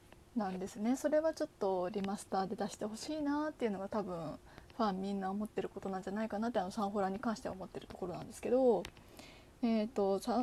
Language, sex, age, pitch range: Japanese, female, 20-39, 195-255 Hz